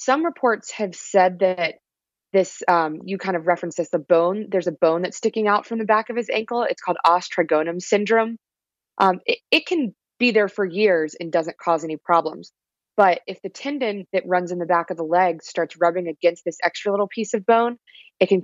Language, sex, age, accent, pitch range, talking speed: English, female, 20-39, American, 170-210 Hz, 215 wpm